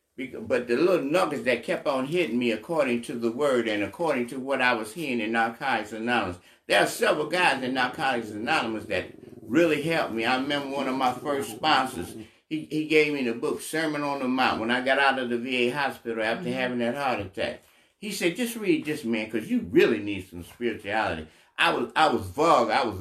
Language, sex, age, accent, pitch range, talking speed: English, male, 60-79, American, 120-200 Hz, 215 wpm